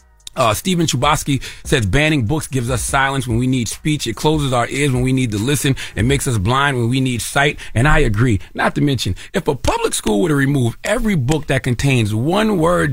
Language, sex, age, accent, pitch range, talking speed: English, male, 30-49, American, 100-140 Hz, 225 wpm